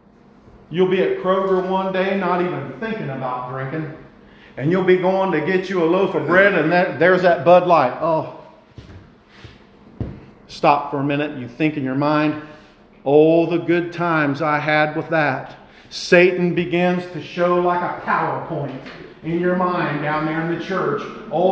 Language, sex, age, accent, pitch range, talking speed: English, male, 50-69, American, 155-200 Hz, 175 wpm